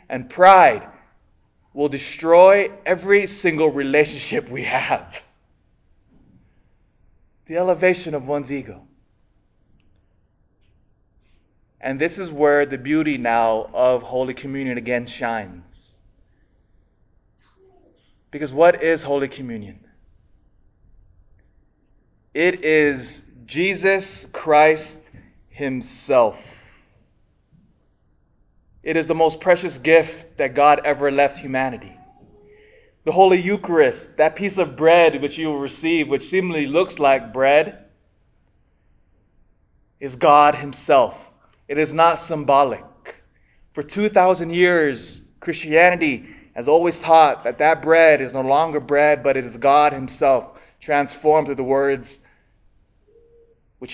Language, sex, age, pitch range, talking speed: English, male, 20-39, 125-165 Hz, 105 wpm